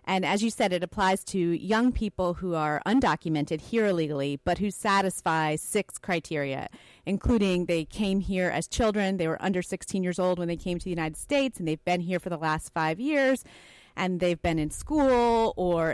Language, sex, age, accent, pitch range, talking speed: English, female, 30-49, American, 170-225 Hz, 200 wpm